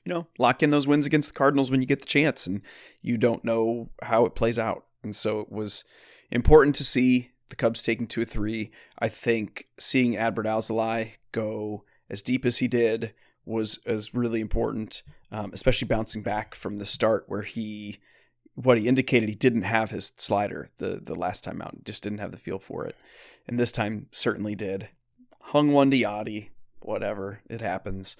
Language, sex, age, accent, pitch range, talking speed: English, male, 30-49, American, 110-130 Hz, 195 wpm